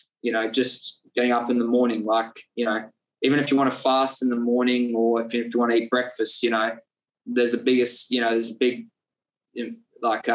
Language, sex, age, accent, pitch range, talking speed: English, male, 20-39, Australian, 115-125 Hz, 225 wpm